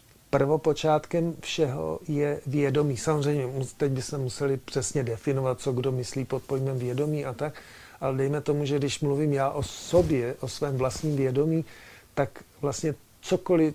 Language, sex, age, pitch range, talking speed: Czech, male, 50-69, 130-150 Hz, 150 wpm